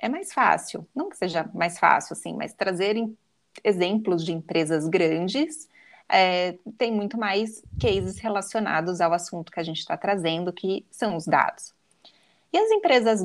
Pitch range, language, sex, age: 180-255 Hz, Portuguese, female, 20-39